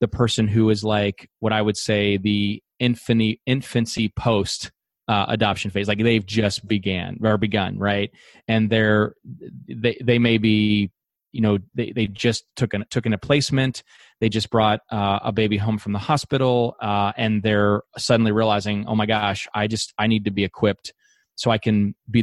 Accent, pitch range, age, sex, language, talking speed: American, 105-120 Hz, 30-49, male, English, 185 wpm